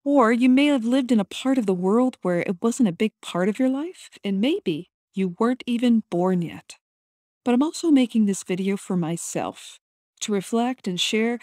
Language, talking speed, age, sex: English, 205 wpm, 40-59, female